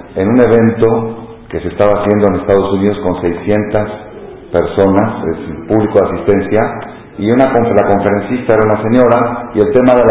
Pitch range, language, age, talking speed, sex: 100-120 Hz, Spanish, 50-69, 180 wpm, male